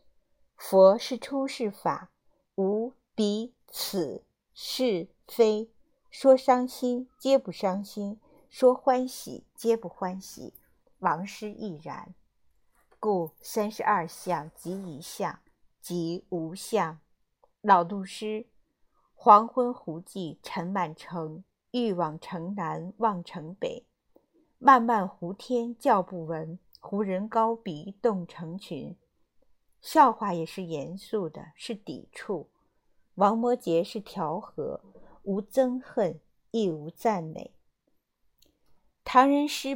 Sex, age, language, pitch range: female, 50-69, Chinese, 175-235 Hz